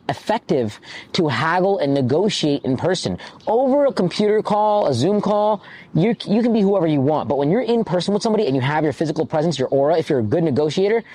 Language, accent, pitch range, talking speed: English, American, 150-205 Hz, 220 wpm